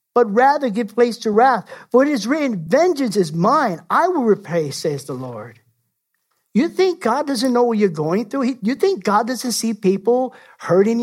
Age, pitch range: 50-69, 190-285 Hz